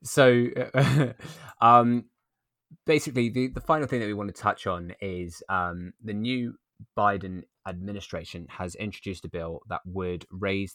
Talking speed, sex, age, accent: 145 wpm, male, 20-39, British